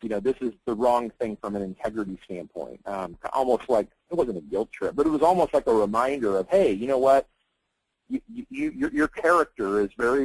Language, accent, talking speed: English, American, 230 wpm